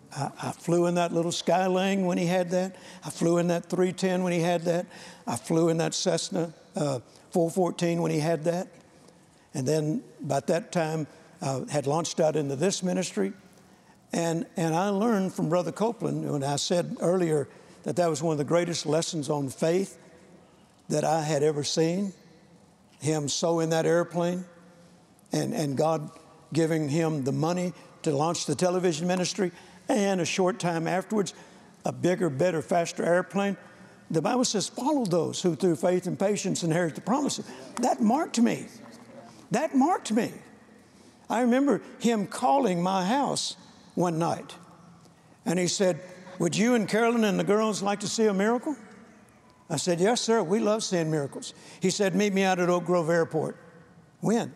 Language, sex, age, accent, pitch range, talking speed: English, male, 60-79, American, 165-195 Hz, 170 wpm